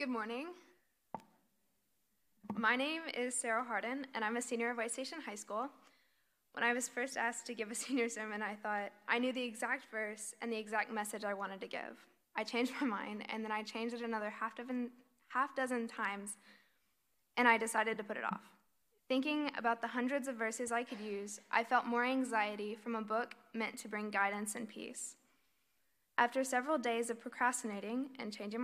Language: English